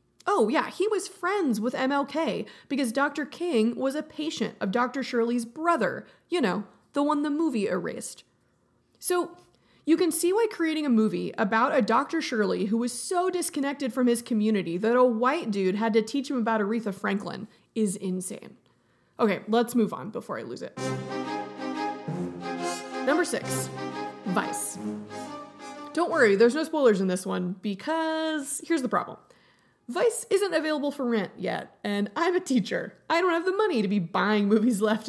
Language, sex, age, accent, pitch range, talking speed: English, female, 30-49, American, 205-305 Hz, 170 wpm